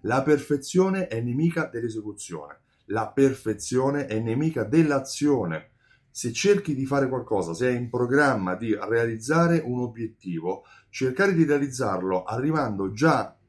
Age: 30-49